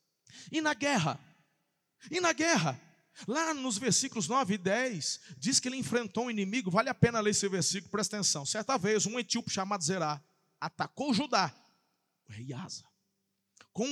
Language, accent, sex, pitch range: Portuguese, Brazilian, male, 155-225 Hz